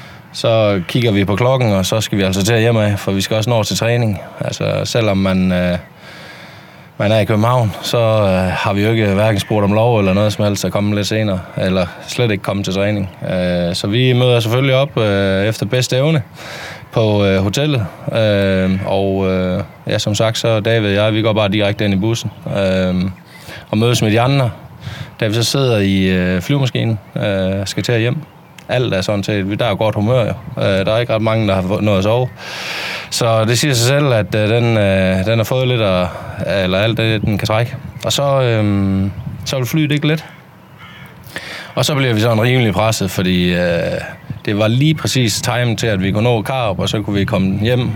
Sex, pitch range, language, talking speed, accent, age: male, 100-120 Hz, Danish, 215 wpm, native, 20-39